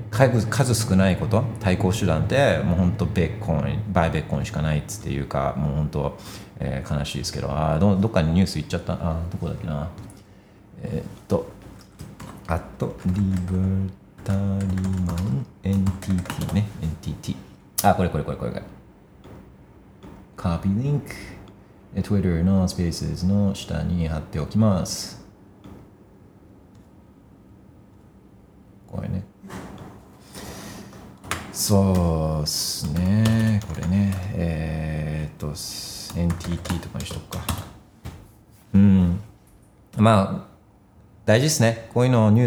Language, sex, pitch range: Japanese, male, 90-105 Hz